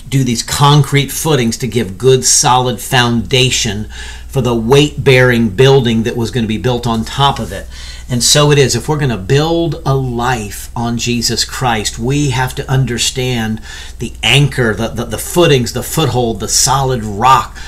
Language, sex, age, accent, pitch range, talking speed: English, male, 50-69, American, 110-140 Hz, 175 wpm